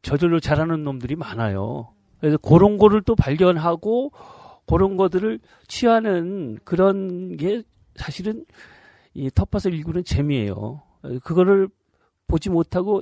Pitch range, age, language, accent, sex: 130-190 Hz, 40-59, Korean, native, male